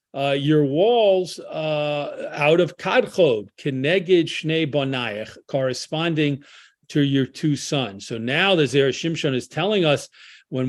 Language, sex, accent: English, male, American